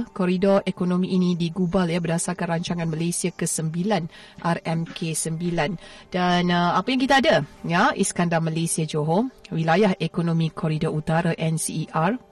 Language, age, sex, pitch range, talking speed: Malay, 30-49, female, 170-205 Hz, 120 wpm